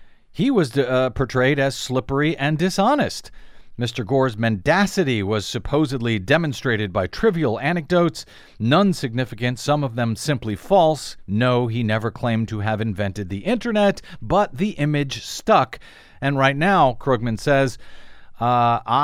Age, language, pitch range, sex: 40-59, English, 120-170 Hz, male